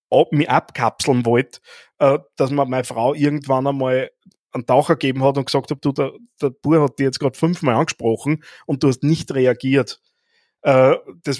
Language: German